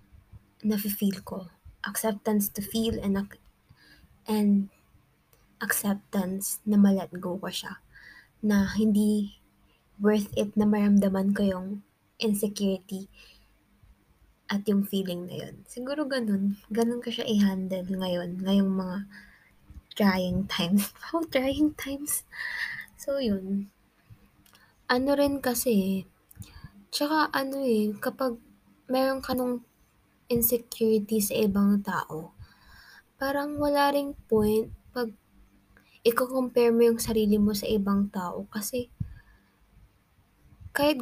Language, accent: Filipino, native